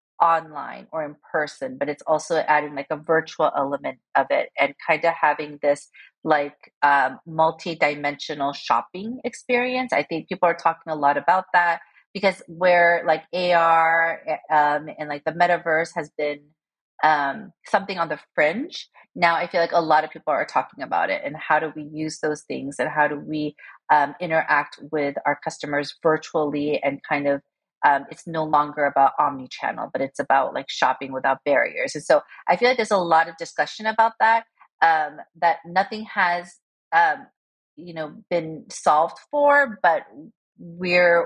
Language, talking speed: English, 170 wpm